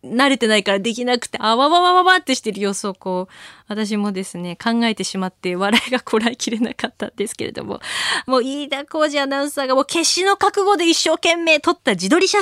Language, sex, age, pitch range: Japanese, female, 20-39, 195-285 Hz